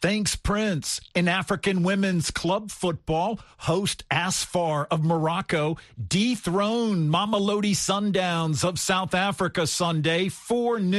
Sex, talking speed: male, 105 wpm